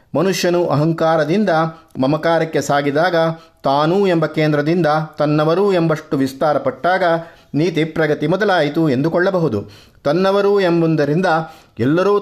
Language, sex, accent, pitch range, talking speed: Kannada, male, native, 140-175 Hz, 85 wpm